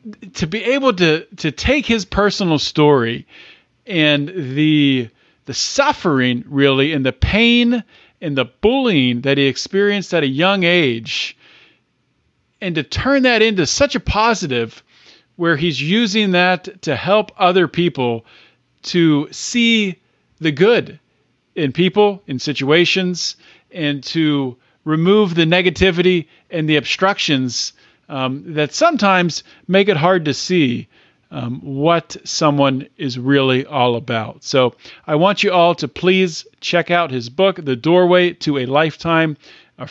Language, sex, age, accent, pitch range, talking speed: English, male, 40-59, American, 145-190 Hz, 135 wpm